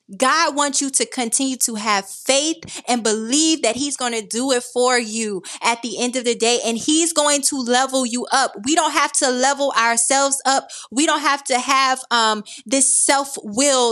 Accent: American